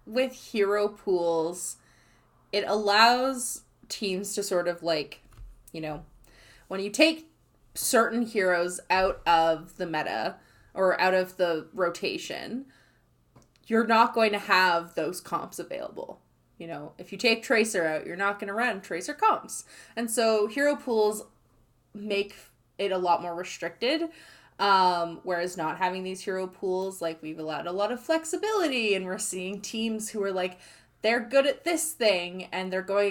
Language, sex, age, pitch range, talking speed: English, female, 20-39, 175-225 Hz, 160 wpm